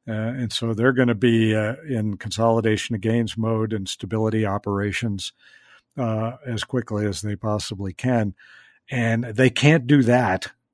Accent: American